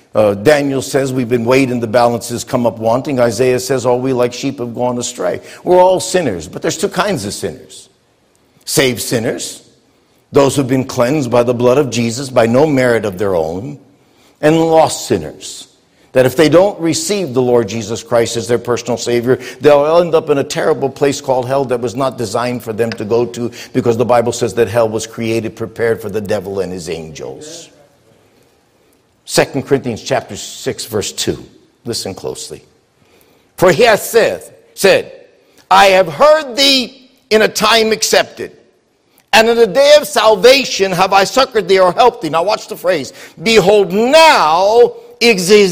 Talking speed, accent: 180 wpm, American